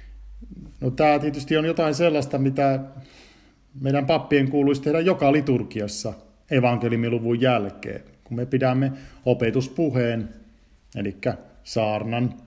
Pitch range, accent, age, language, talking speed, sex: 115-150 Hz, native, 50-69, Finnish, 95 wpm, male